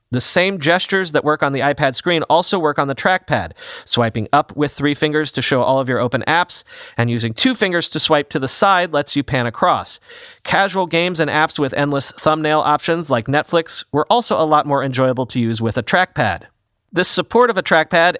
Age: 30-49